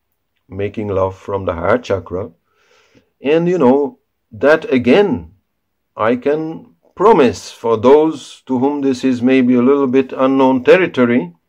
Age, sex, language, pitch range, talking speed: 50-69, male, English, 95-135 Hz, 135 wpm